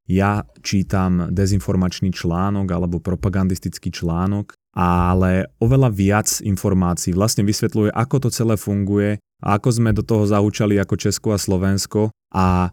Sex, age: male, 20-39